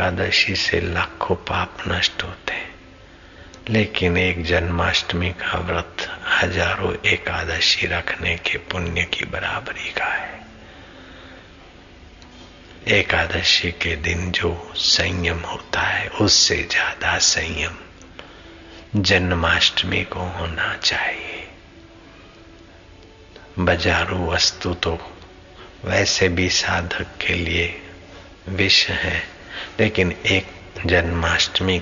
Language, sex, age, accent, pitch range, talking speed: Hindi, male, 60-79, native, 85-95 Hz, 90 wpm